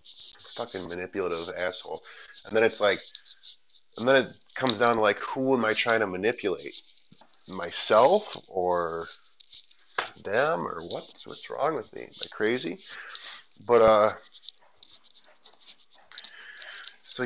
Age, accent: 30-49, American